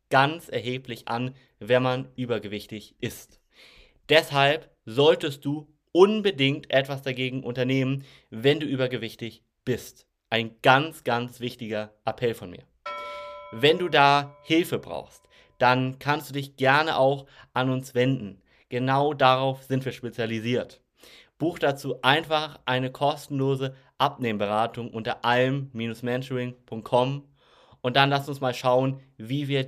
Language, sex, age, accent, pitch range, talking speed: German, male, 30-49, German, 115-135 Hz, 120 wpm